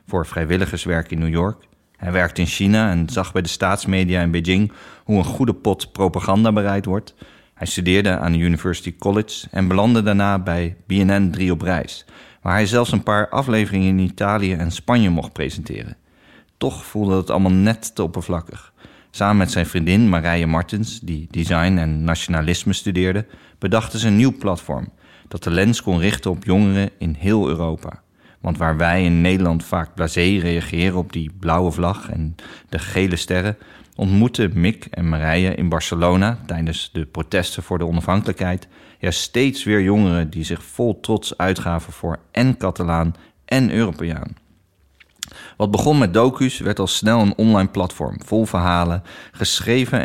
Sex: male